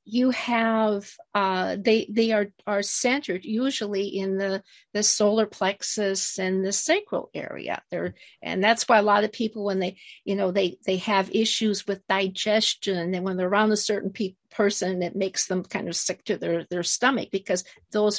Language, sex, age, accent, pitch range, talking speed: English, female, 50-69, American, 195-230 Hz, 185 wpm